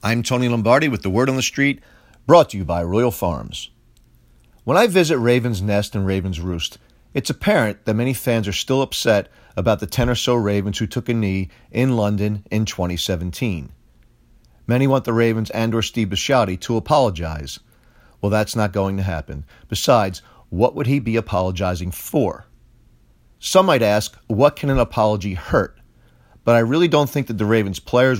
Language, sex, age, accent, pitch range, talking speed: English, male, 40-59, American, 95-120 Hz, 180 wpm